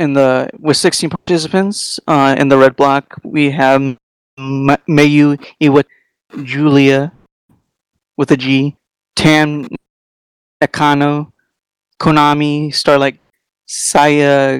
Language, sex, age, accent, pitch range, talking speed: English, male, 30-49, American, 140-160 Hz, 105 wpm